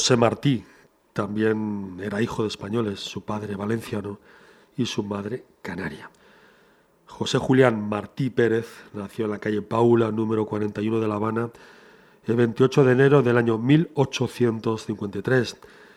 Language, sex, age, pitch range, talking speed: Spanish, male, 40-59, 105-130 Hz, 130 wpm